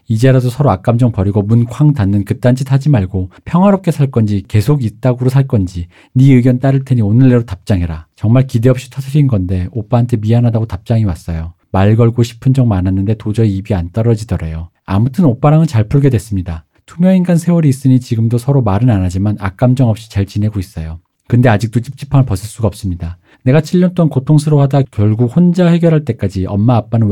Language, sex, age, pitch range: Korean, male, 40-59, 100-130 Hz